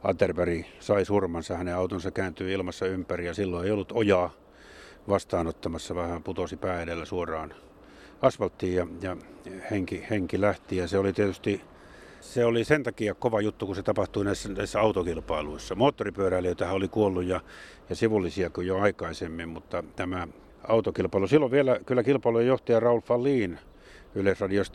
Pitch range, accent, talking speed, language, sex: 90-105 Hz, native, 145 wpm, Finnish, male